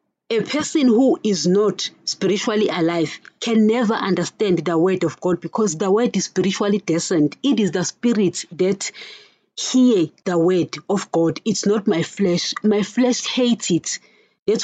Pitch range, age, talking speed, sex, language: 175-220 Hz, 30-49, 160 wpm, female, English